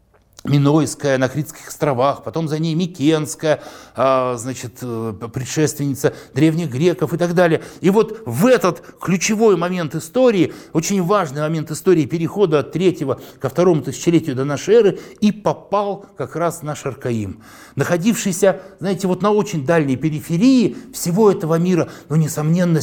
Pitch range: 135-185 Hz